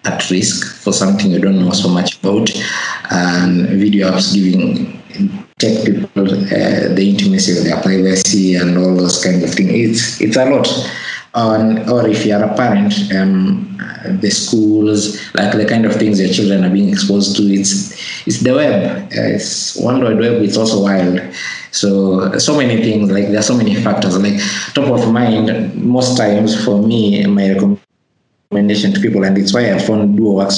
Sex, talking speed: male, 185 wpm